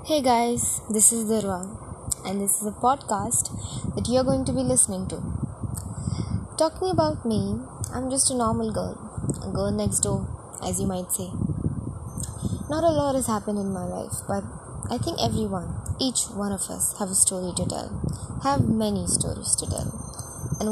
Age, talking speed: 20-39, 175 wpm